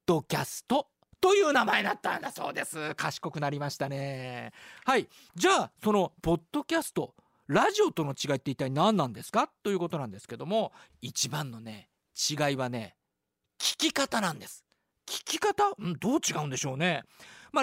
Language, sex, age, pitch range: Japanese, male, 40-59, 160-270 Hz